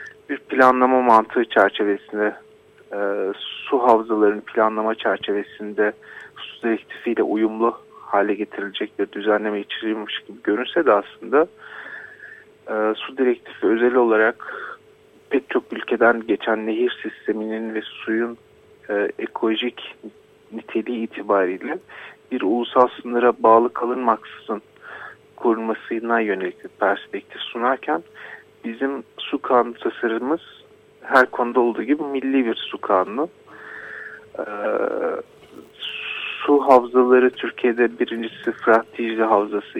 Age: 50-69